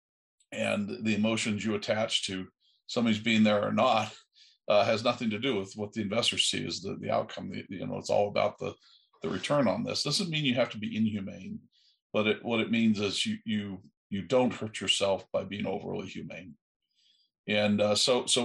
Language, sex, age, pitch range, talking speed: English, male, 50-69, 100-115 Hz, 210 wpm